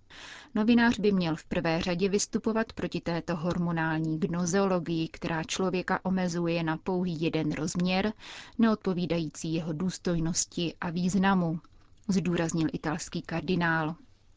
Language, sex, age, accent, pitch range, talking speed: Czech, female, 30-49, native, 165-195 Hz, 110 wpm